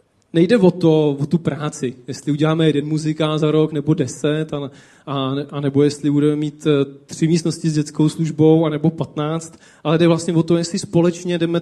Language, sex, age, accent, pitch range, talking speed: Czech, male, 20-39, native, 145-180 Hz, 185 wpm